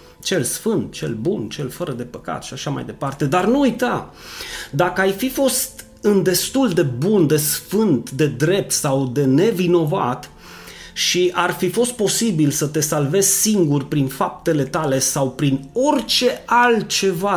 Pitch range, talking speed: 135-175 Hz, 160 wpm